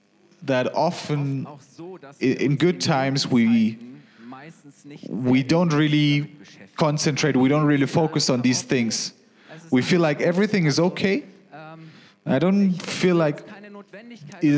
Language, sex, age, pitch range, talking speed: German, male, 30-49, 130-165 Hz, 115 wpm